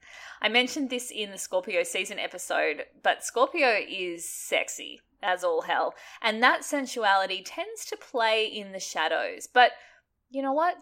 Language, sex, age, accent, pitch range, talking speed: English, female, 20-39, Australian, 190-265 Hz, 155 wpm